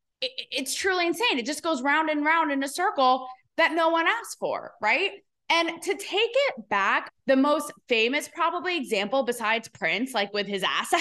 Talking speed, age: 185 wpm, 20-39